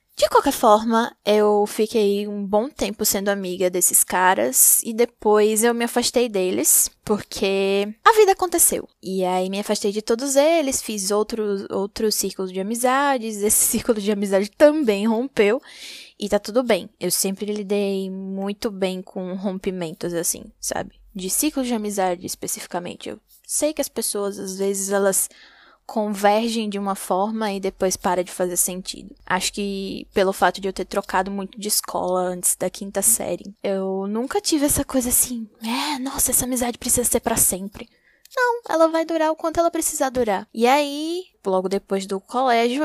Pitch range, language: 195-260 Hz, Portuguese